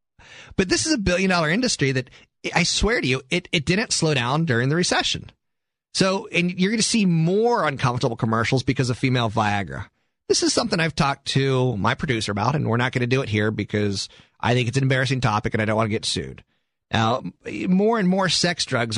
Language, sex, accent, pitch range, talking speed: English, male, American, 115-165 Hz, 220 wpm